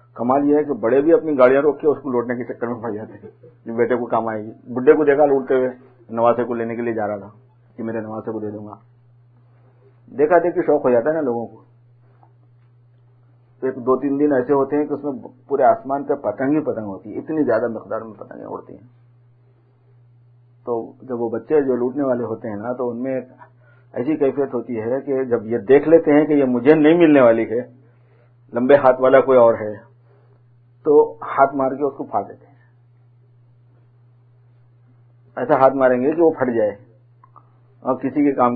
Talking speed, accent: 130 wpm, Indian